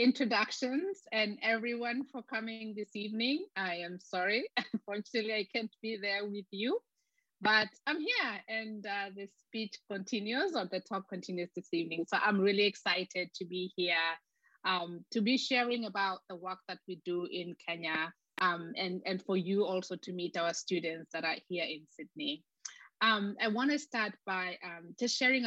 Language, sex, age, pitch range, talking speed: English, female, 20-39, 175-230 Hz, 170 wpm